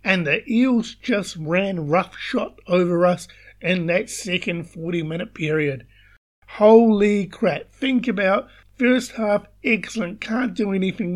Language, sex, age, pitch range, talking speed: English, male, 50-69, 165-220 Hz, 130 wpm